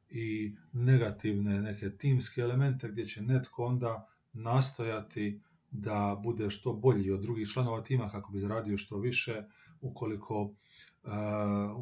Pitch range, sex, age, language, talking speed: 105-130 Hz, male, 40-59, Croatian, 125 wpm